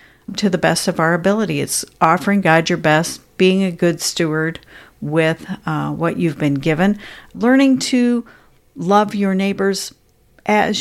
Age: 50-69